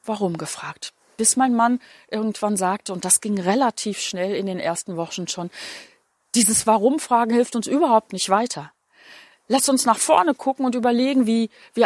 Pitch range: 195-240 Hz